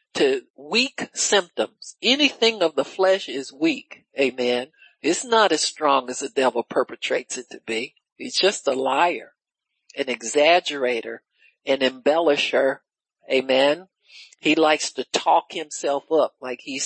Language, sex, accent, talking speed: English, male, American, 135 wpm